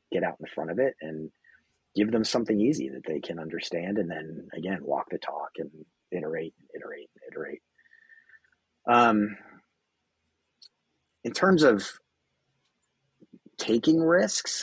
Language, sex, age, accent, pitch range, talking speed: English, male, 30-49, American, 100-125 Hz, 125 wpm